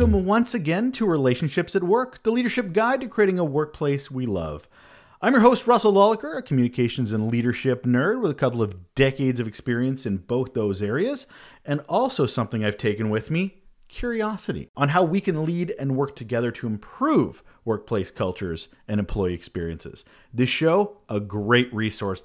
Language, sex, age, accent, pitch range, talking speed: English, male, 40-59, American, 105-165 Hz, 175 wpm